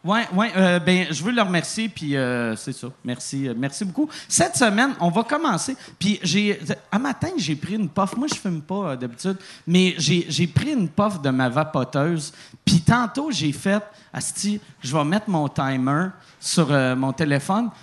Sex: male